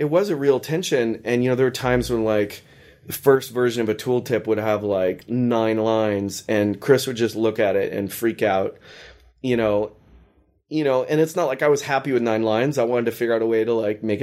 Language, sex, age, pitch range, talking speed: English, male, 20-39, 110-125 Hz, 245 wpm